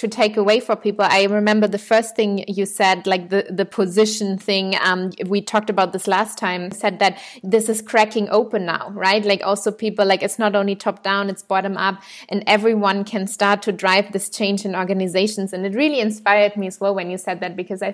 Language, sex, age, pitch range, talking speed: English, female, 20-39, 195-225 Hz, 225 wpm